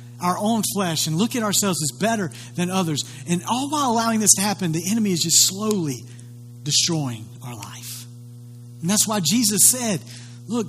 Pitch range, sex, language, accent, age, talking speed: 120-190 Hz, male, English, American, 50-69, 180 wpm